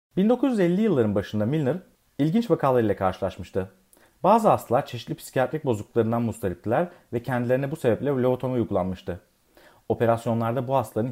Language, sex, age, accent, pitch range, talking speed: Turkish, male, 40-59, native, 105-140 Hz, 120 wpm